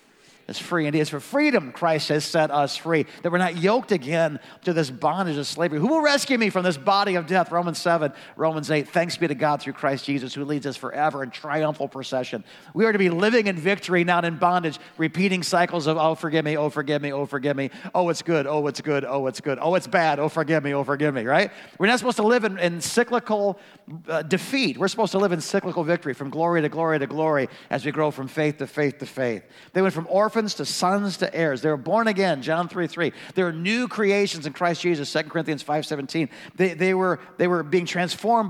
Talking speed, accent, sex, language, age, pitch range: 235 wpm, American, male, English, 40-59, 150-190 Hz